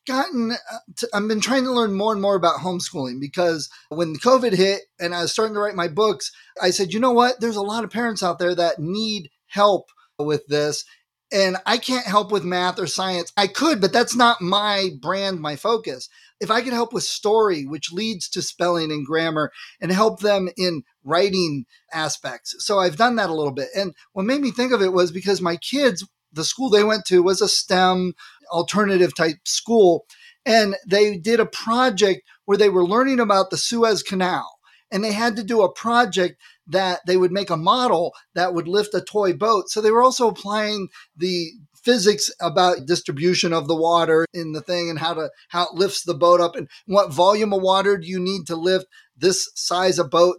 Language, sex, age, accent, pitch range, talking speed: English, male, 30-49, American, 175-220 Hz, 210 wpm